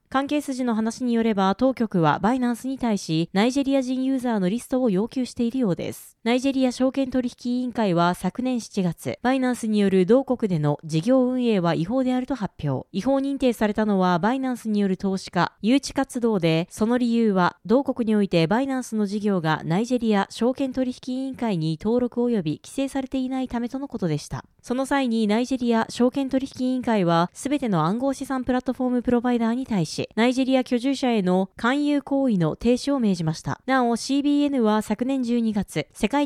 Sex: female